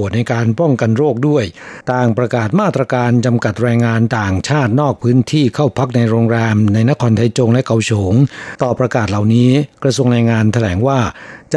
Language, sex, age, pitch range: Thai, male, 60-79, 110-135 Hz